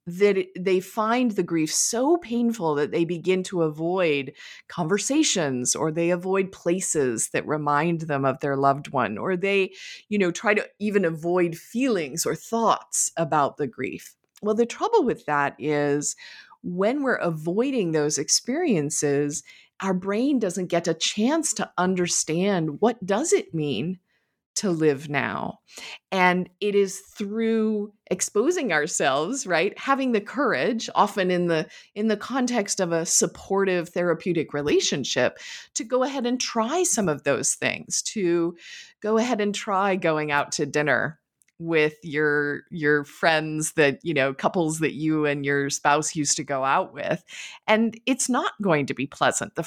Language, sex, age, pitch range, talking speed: English, female, 30-49, 155-215 Hz, 155 wpm